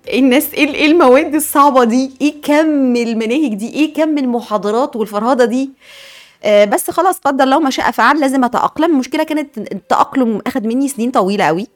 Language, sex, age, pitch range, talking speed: Arabic, female, 20-39, 205-275 Hz, 160 wpm